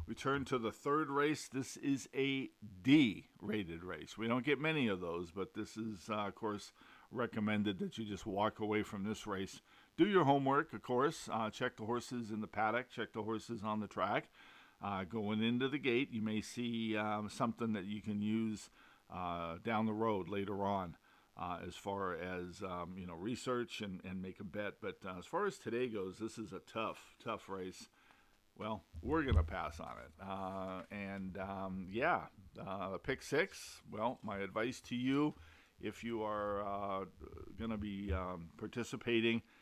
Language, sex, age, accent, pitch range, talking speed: English, male, 50-69, American, 95-115 Hz, 185 wpm